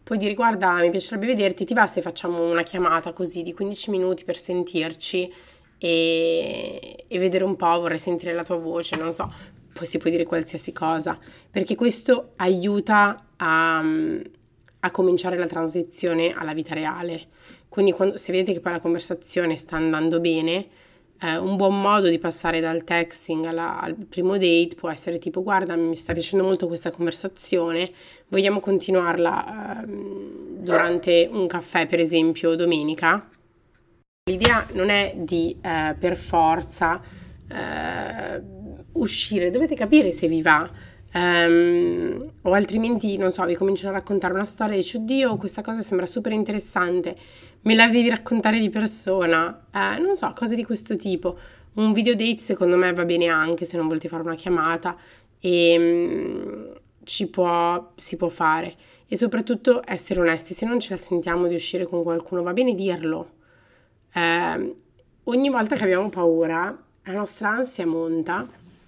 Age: 30-49